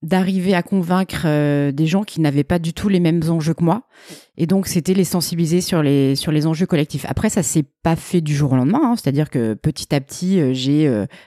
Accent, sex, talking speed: French, female, 240 wpm